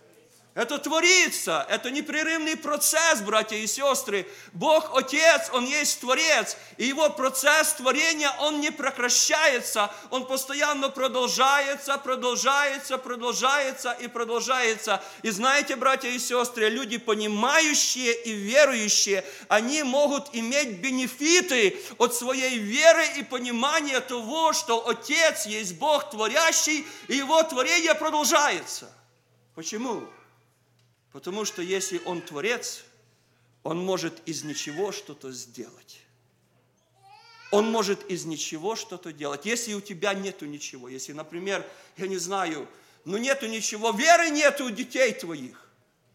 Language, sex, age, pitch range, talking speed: English, male, 40-59, 200-295 Hz, 120 wpm